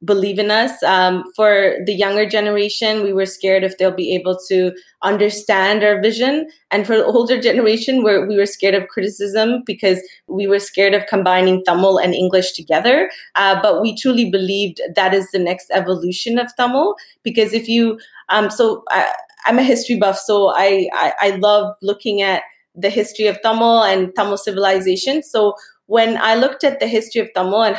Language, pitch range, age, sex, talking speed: English, 195-240 Hz, 20-39, female, 185 wpm